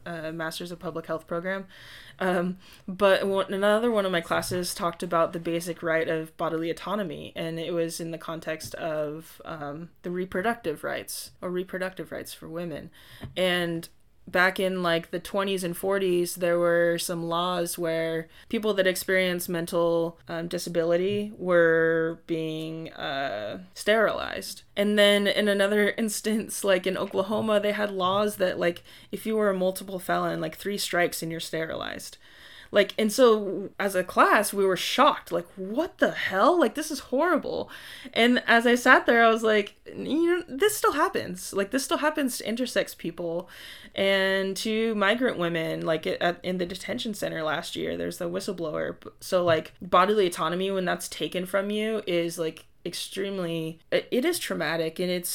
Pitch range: 170-205 Hz